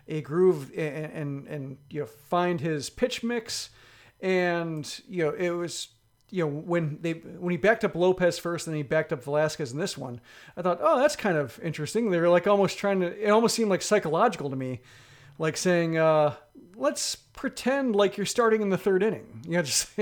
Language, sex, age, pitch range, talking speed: English, male, 40-59, 150-195 Hz, 210 wpm